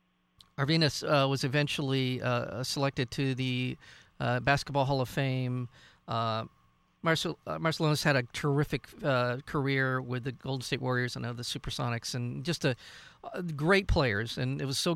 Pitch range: 125-150 Hz